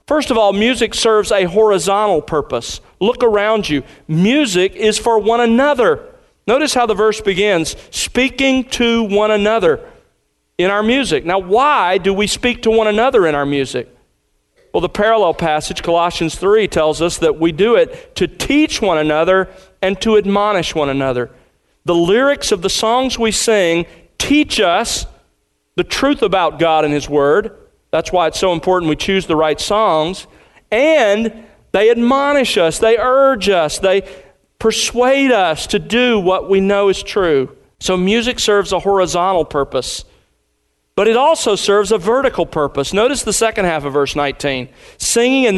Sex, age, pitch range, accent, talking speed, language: male, 40-59, 170-240 Hz, American, 165 wpm, English